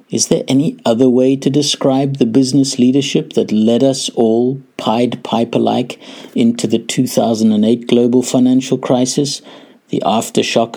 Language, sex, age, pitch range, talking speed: English, male, 50-69, 110-140 Hz, 135 wpm